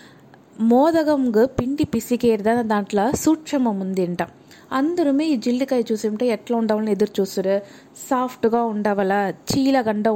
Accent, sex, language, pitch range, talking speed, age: native, female, Telugu, 205-255 Hz, 110 wpm, 20-39